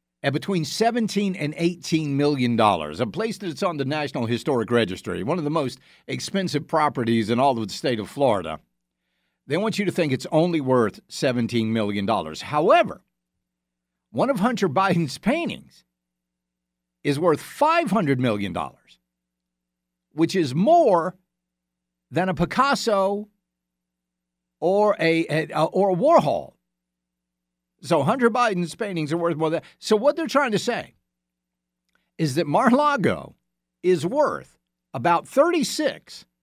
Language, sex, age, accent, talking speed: English, male, 50-69, American, 135 wpm